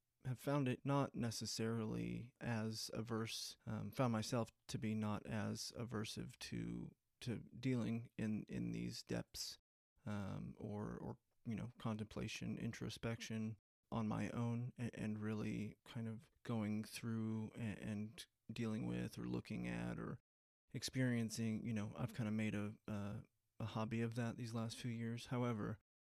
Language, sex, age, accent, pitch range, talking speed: English, male, 20-39, American, 110-120 Hz, 145 wpm